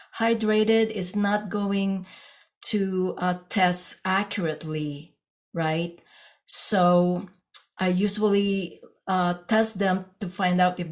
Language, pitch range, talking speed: English, 175-220 Hz, 105 wpm